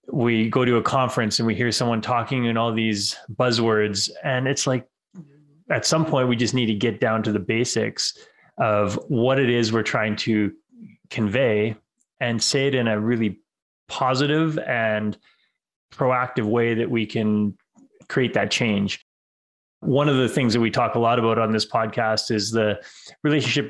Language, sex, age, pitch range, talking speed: English, male, 20-39, 110-130 Hz, 175 wpm